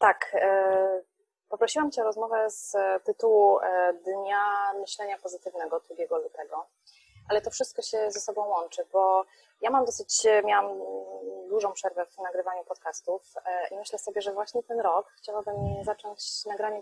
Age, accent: 20-39, native